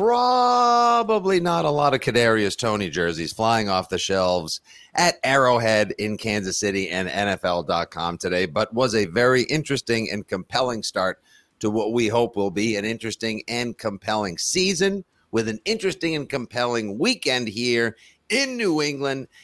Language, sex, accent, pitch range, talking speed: English, male, American, 100-170 Hz, 150 wpm